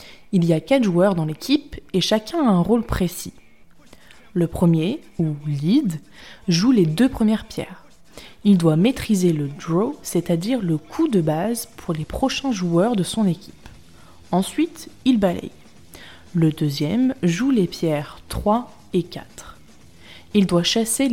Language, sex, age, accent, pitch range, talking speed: French, female, 20-39, French, 165-230 Hz, 150 wpm